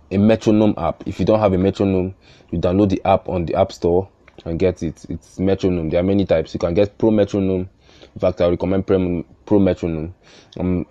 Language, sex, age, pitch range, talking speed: English, male, 20-39, 85-105 Hz, 215 wpm